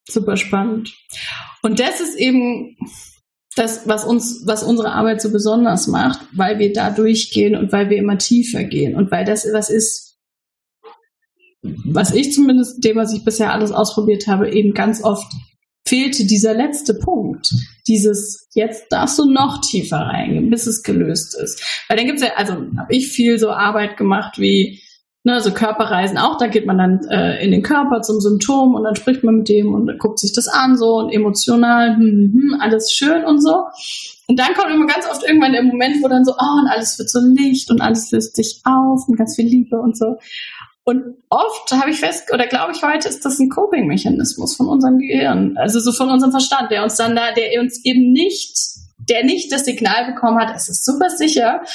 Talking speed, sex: 200 wpm, female